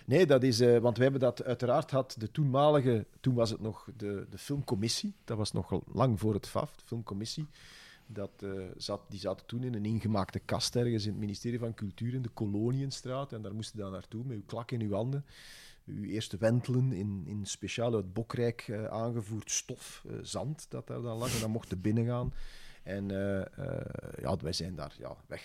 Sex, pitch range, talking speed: male, 100-130 Hz, 210 wpm